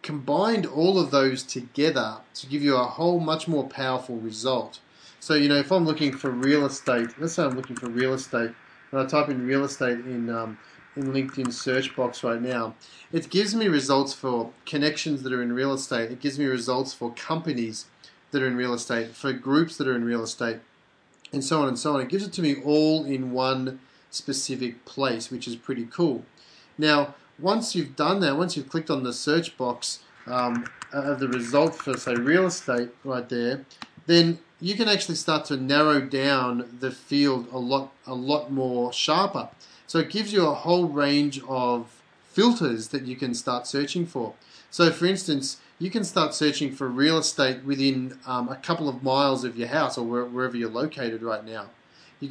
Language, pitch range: English, 125-155 Hz